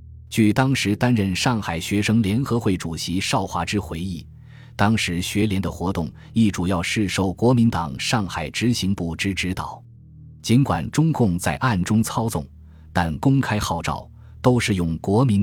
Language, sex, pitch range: Chinese, male, 85-120 Hz